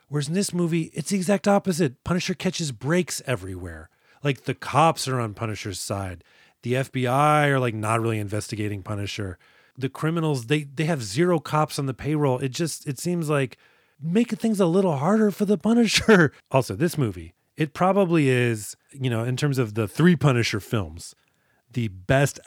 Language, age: English, 30-49